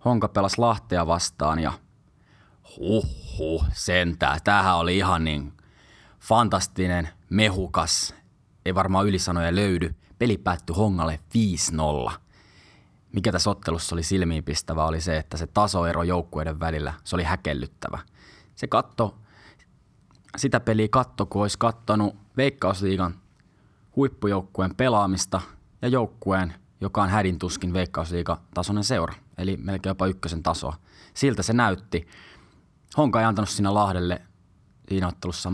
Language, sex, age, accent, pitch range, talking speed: Finnish, male, 20-39, native, 85-105 Hz, 115 wpm